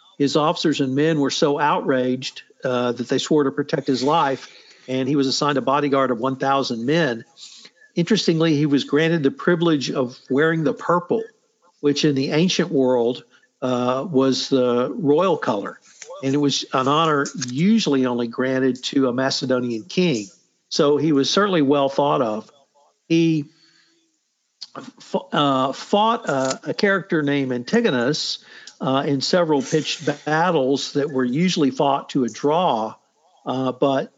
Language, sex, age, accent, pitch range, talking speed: English, male, 50-69, American, 130-160 Hz, 150 wpm